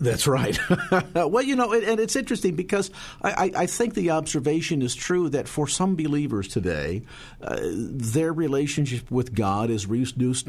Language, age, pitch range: English, 50-69, 105-140 Hz